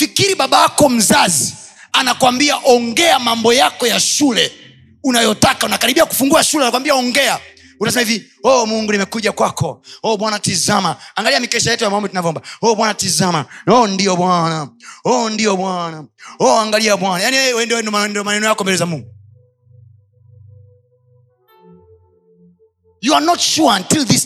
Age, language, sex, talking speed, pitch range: 30-49, Swahili, male, 75 wpm, 180-265 Hz